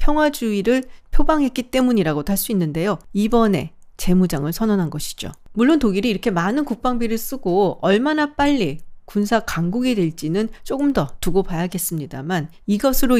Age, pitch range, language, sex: 40-59, 175-235 Hz, Korean, female